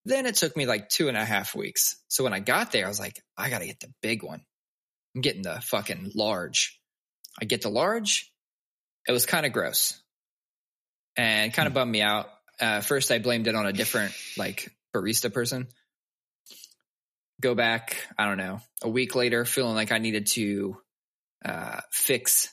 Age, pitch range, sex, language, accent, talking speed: 20-39, 105-130 Hz, male, English, American, 190 wpm